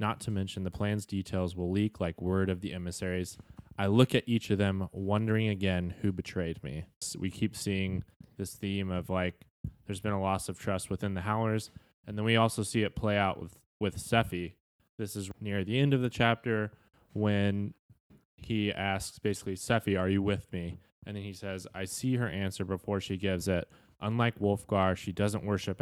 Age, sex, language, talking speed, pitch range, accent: 20-39, male, English, 200 wpm, 90-105 Hz, American